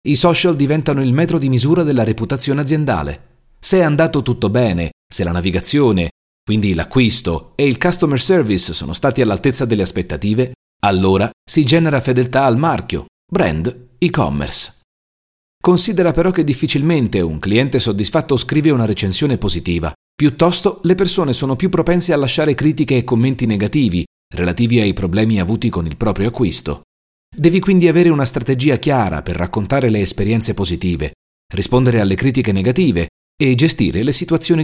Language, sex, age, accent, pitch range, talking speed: Italian, male, 40-59, native, 95-145 Hz, 150 wpm